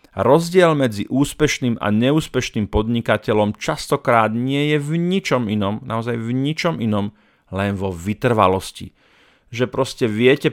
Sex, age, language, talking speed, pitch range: male, 40-59, Slovak, 125 wpm, 105-125 Hz